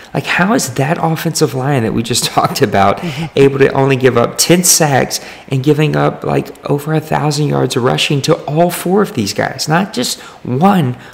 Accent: American